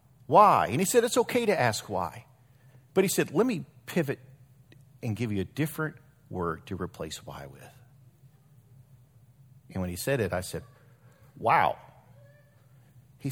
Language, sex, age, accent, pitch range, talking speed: English, male, 50-69, American, 120-150 Hz, 155 wpm